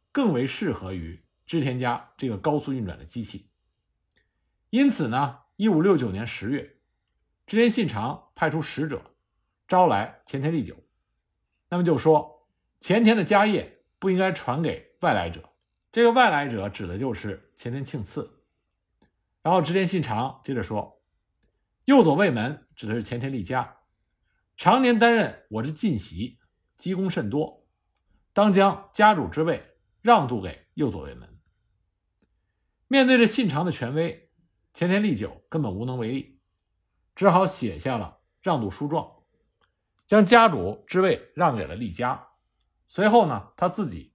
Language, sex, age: Chinese, male, 50-69